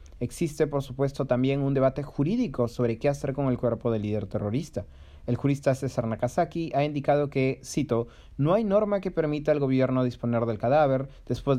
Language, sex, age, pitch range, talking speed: Spanish, male, 30-49, 120-145 Hz, 180 wpm